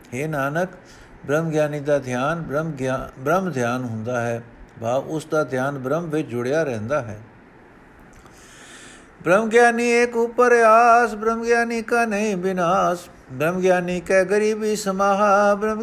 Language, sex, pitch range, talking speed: Punjabi, male, 150-205 Hz, 135 wpm